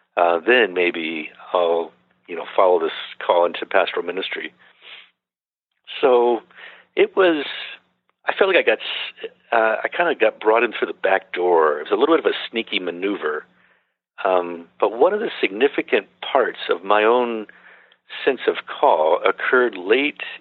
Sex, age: male, 50-69